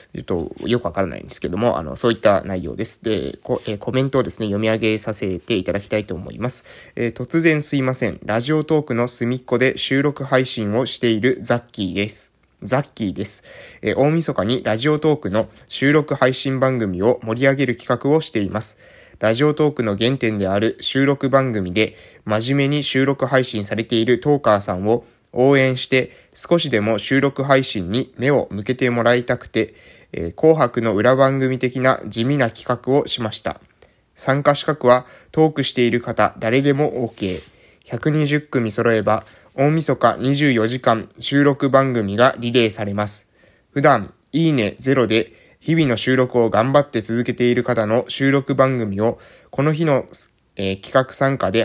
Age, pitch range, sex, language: 20-39, 110-135 Hz, male, Japanese